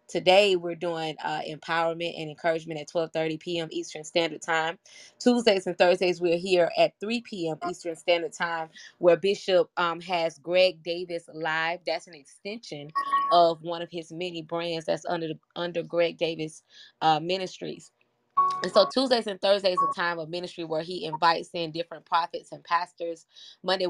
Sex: female